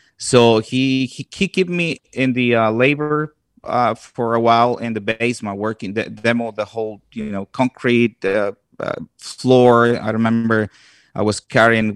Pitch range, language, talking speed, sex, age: 105-125 Hz, English, 165 wpm, male, 30-49